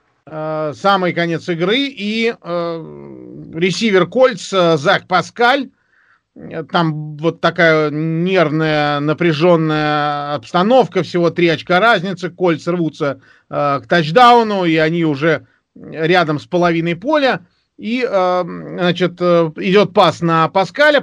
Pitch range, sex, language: 155-200 Hz, male, Russian